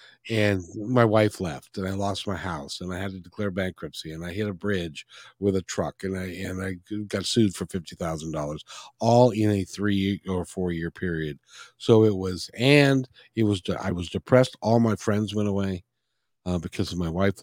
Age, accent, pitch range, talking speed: 50-69, American, 90-105 Hz, 200 wpm